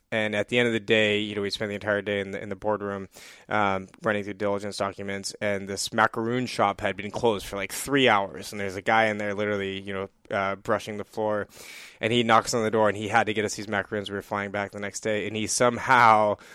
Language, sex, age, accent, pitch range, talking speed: English, male, 10-29, American, 100-115 Hz, 260 wpm